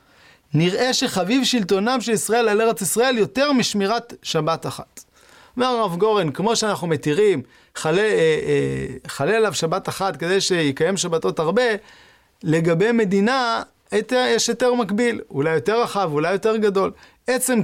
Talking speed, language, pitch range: 135 wpm, Hebrew, 150-215 Hz